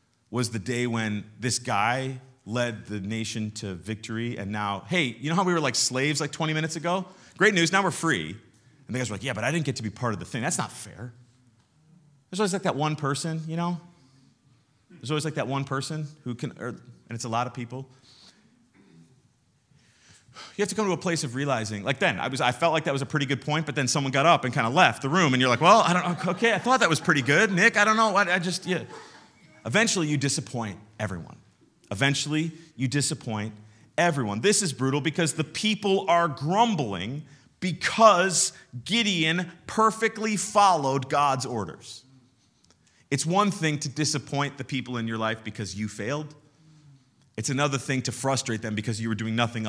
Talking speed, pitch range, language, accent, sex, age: 205 wpm, 120-165 Hz, English, American, male, 30-49